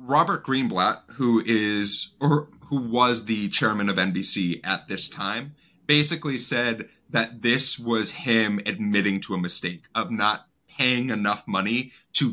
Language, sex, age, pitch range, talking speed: English, male, 30-49, 100-140 Hz, 145 wpm